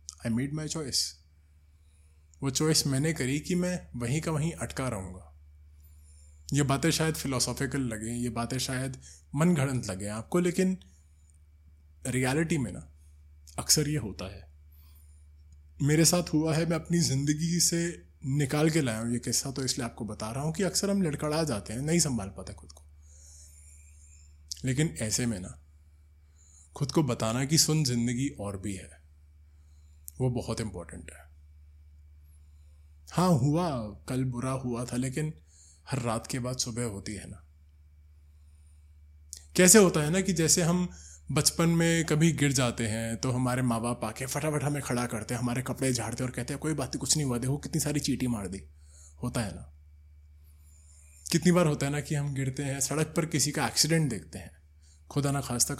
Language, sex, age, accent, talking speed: Hindi, male, 20-39, native, 170 wpm